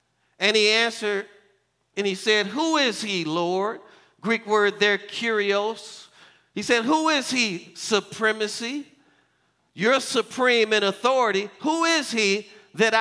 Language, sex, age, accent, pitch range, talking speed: English, male, 50-69, American, 175-225 Hz, 130 wpm